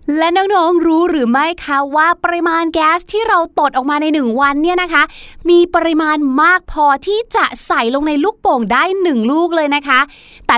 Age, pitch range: 20-39, 225-330 Hz